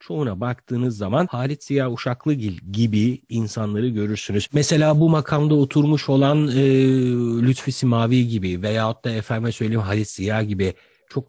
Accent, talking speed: native, 140 wpm